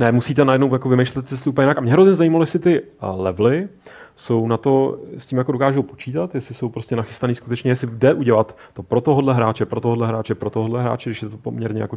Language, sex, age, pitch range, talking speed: Czech, male, 30-49, 110-135 Hz, 230 wpm